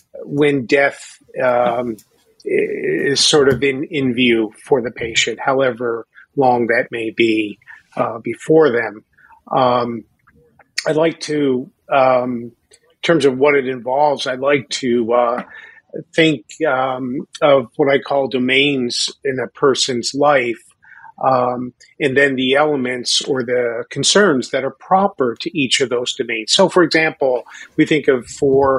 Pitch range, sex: 125-145 Hz, male